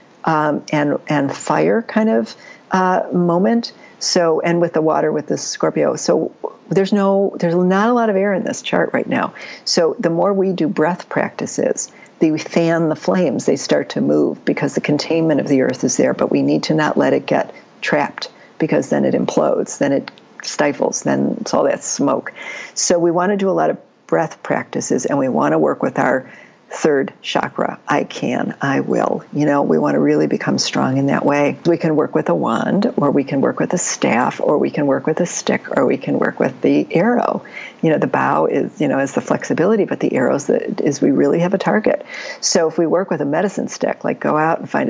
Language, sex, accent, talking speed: English, female, American, 225 wpm